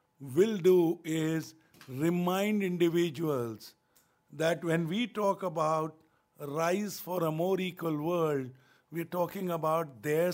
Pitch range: 155-195 Hz